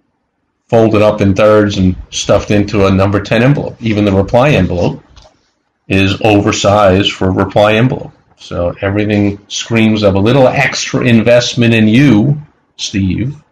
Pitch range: 100-110 Hz